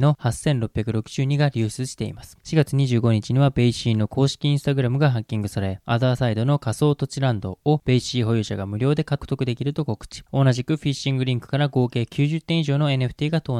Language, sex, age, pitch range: Japanese, male, 20-39, 115-145 Hz